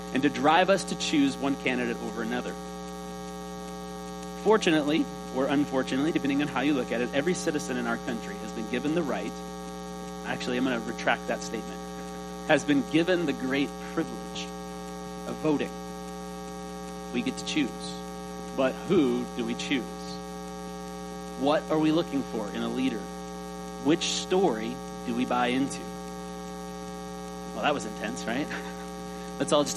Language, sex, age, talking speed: English, male, 40-59, 155 wpm